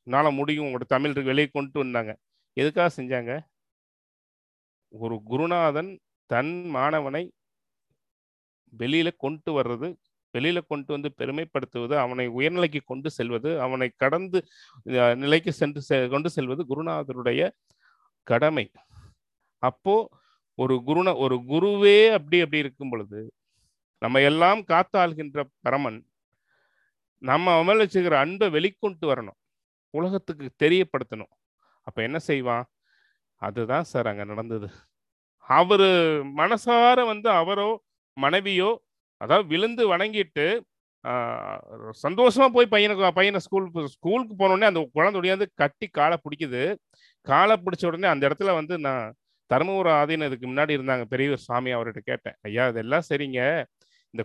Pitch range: 125-185 Hz